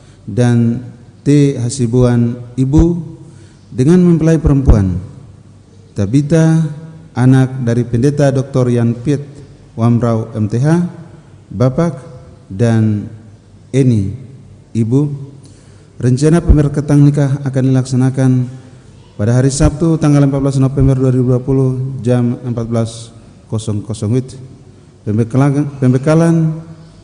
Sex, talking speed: male, 80 wpm